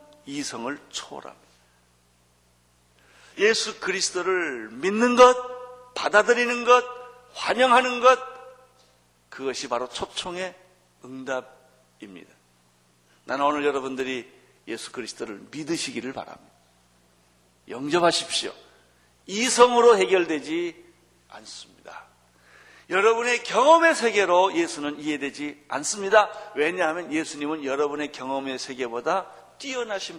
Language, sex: Korean, male